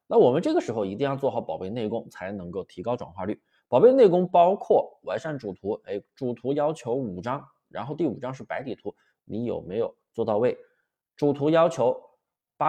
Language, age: Chinese, 20-39